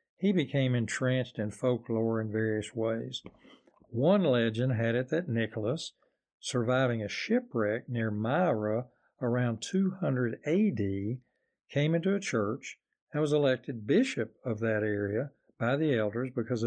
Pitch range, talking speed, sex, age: 110-145 Hz, 135 wpm, male, 60-79